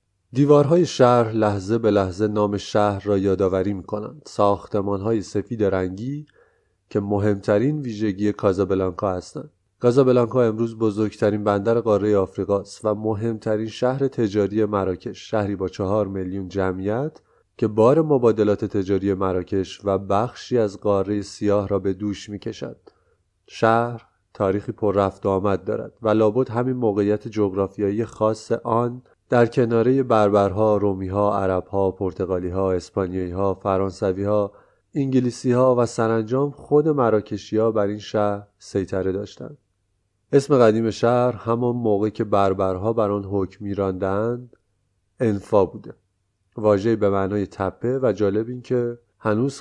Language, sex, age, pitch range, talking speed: Persian, male, 30-49, 100-115 Hz, 125 wpm